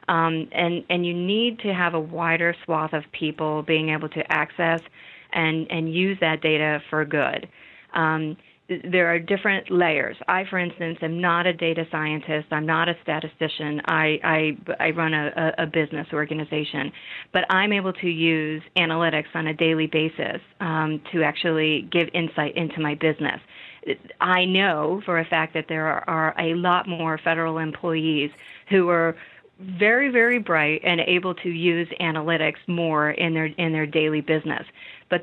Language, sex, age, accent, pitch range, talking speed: English, female, 40-59, American, 155-175 Hz, 170 wpm